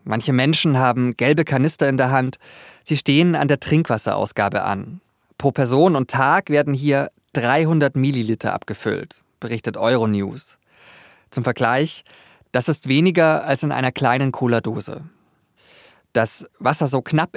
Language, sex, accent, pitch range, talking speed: German, male, German, 115-150 Hz, 135 wpm